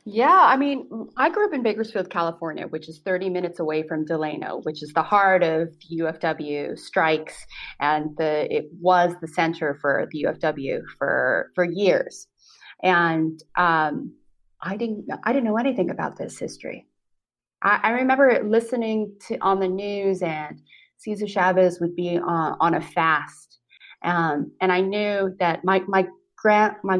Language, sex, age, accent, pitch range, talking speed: English, female, 30-49, American, 165-220 Hz, 160 wpm